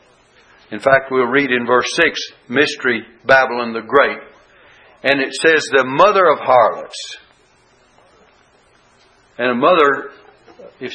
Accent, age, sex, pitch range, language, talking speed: American, 60-79, male, 120-195 Hz, English, 120 wpm